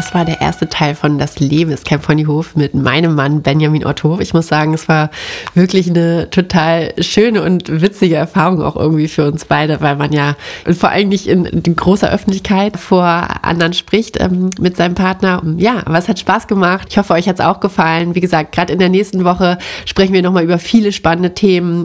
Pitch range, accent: 160-185 Hz, German